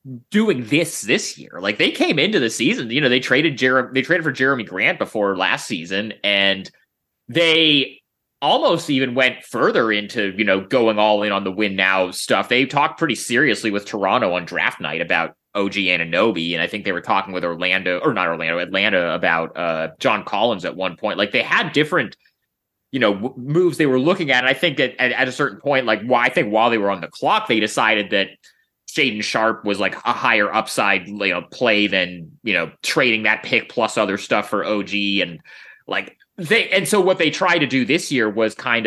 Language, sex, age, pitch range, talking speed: English, male, 30-49, 100-145 Hz, 215 wpm